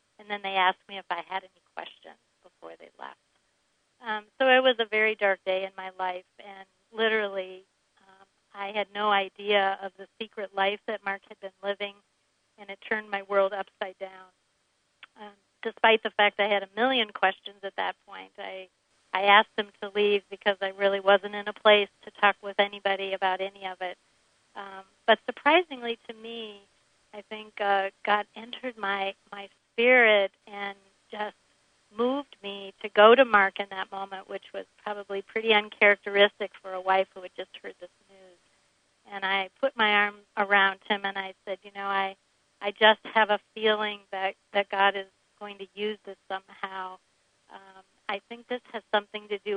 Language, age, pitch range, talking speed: English, 50-69, 195-215 Hz, 185 wpm